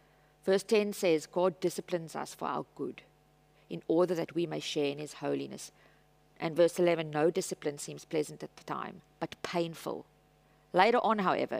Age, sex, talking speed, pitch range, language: 50-69, female, 170 wpm, 155-205 Hz, English